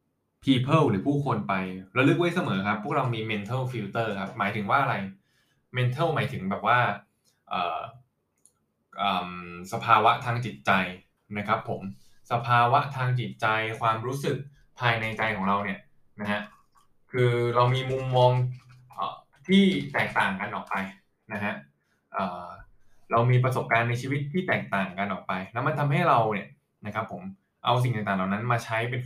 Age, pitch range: 20-39, 110-140 Hz